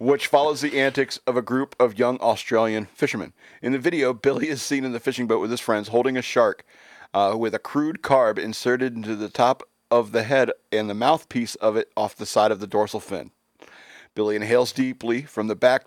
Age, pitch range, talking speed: 40-59, 105-135 Hz, 215 wpm